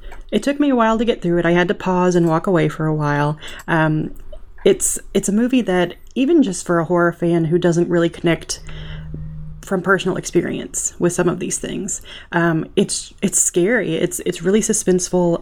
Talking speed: 200 wpm